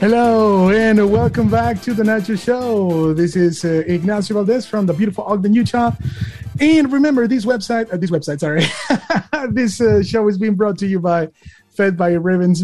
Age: 30-49